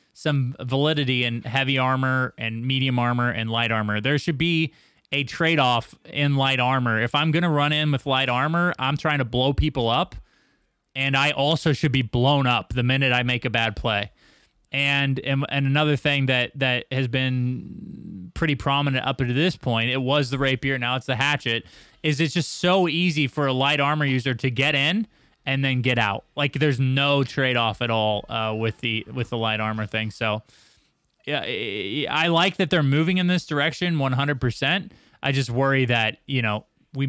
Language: English